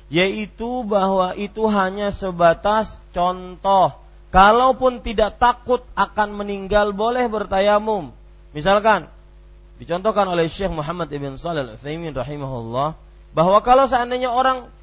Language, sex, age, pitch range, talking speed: Malay, male, 30-49, 170-240 Hz, 95 wpm